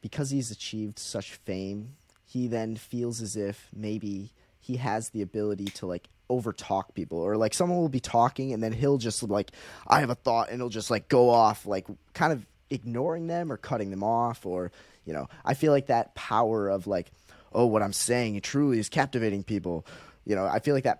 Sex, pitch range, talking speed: male, 95-125 Hz, 210 wpm